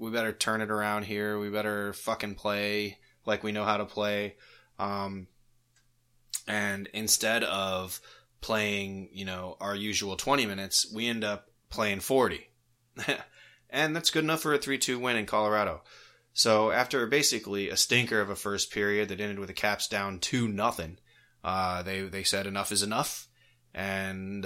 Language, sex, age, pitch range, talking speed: English, male, 20-39, 100-120 Hz, 160 wpm